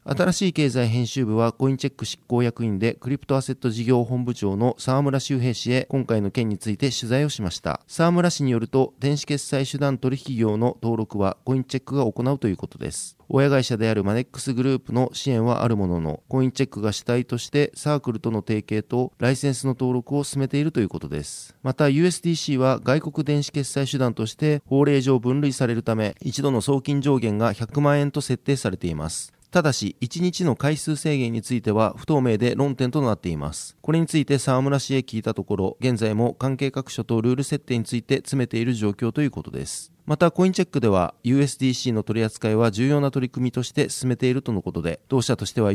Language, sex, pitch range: Japanese, male, 115-140 Hz